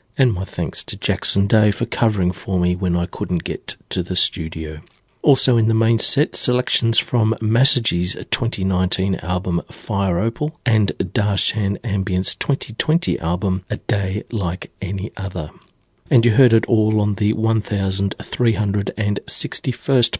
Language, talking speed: English, 140 wpm